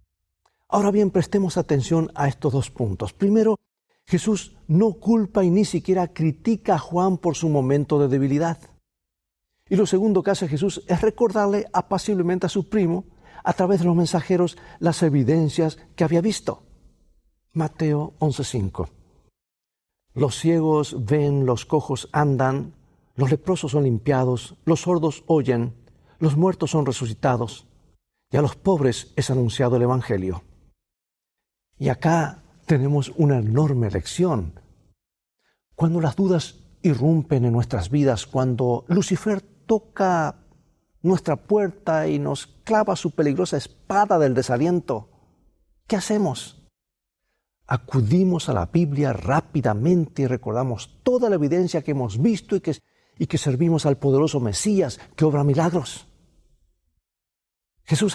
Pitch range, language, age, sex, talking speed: 125-180 Hz, Spanish, 50-69, male, 130 wpm